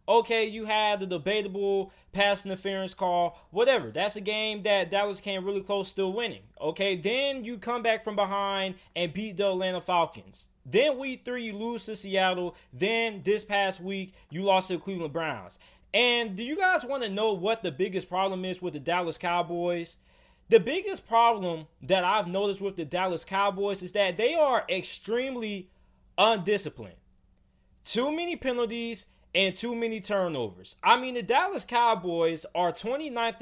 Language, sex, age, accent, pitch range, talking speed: English, male, 20-39, American, 180-230 Hz, 170 wpm